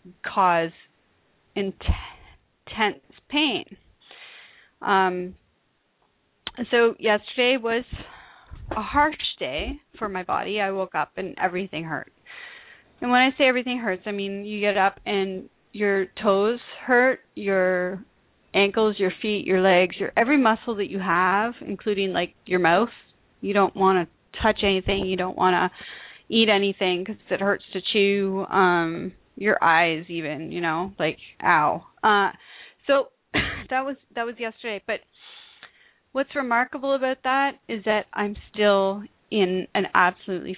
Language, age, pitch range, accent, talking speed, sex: English, 30-49, 185-225 Hz, American, 140 wpm, female